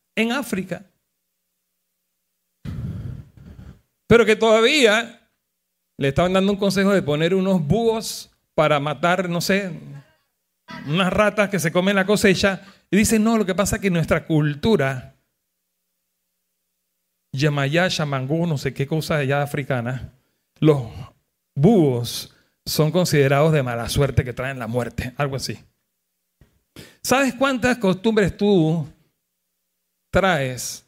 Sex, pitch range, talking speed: male, 125-200 Hz, 120 wpm